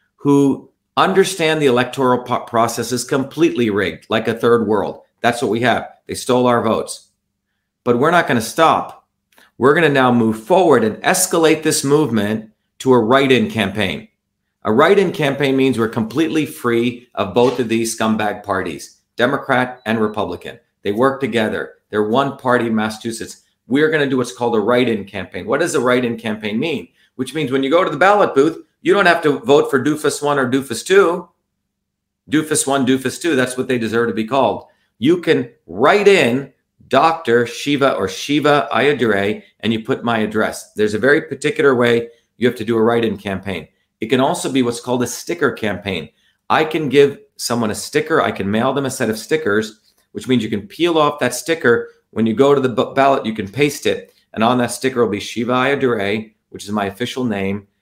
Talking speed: 195 wpm